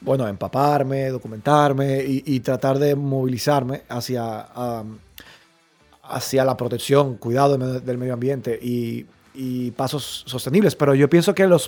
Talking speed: 135 wpm